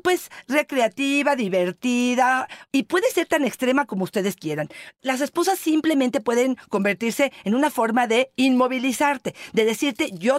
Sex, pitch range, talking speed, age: female, 210-270 Hz, 140 wpm, 40-59